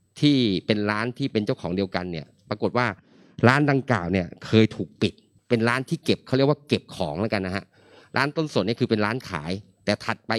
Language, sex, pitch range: Thai, male, 100-125 Hz